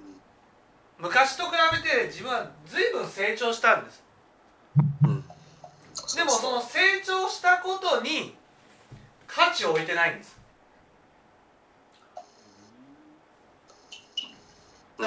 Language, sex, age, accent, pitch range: Japanese, male, 40-59, native, 240-350 Hz